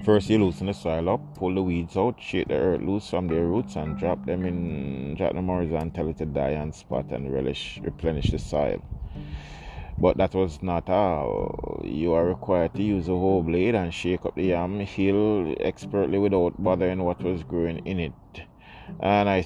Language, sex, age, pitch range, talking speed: English, male, 30-49, 80-95 Hz, 200 wpm